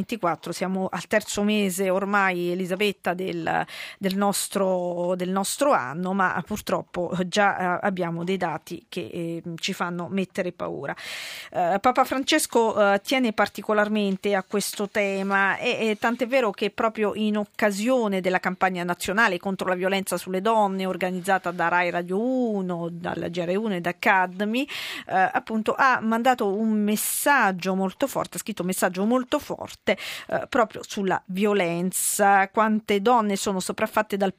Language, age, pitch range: Italian, 40-59, 180-215 Hz